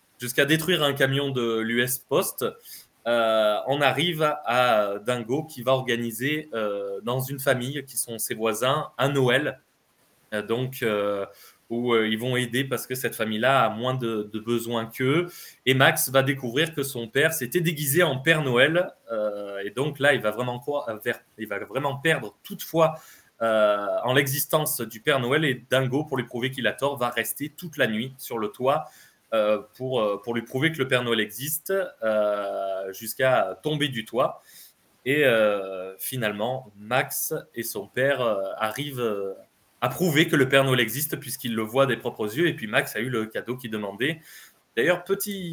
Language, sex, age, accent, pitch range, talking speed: French, male, 20-39, French, 115-150 Hz, 185 wpm